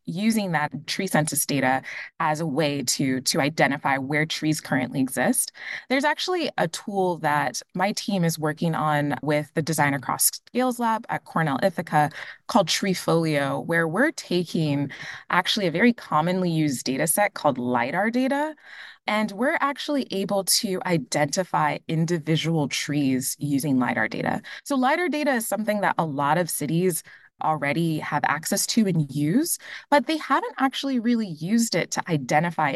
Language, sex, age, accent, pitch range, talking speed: English, female, 20-39, American, 150-225 Hz, 155 wpm